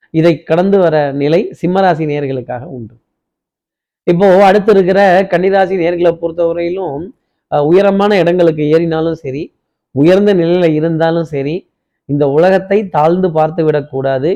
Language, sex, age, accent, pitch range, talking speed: Tamil, male, 30-49, native, 150-180 Hz, 110 wpm